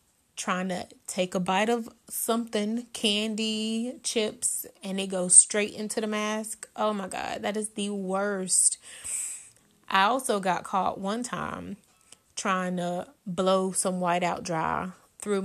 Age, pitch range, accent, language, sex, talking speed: 20-39, 185-220 Hz, American, English, female, 145 wpm